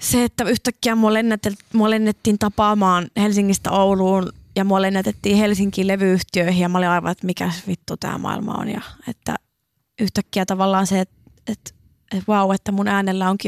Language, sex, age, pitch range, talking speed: Finnish, female, 20-39, 195-225 Hz, 170 wpm